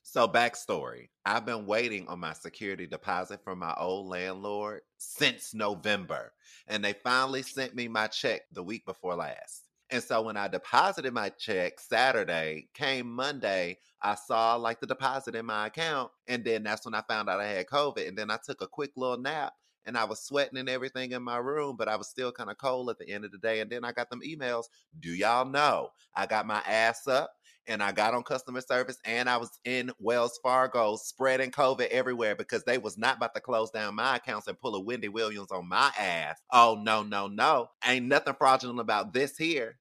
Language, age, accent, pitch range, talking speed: English, 30-49, American, 105-130 Hz, 215 wpm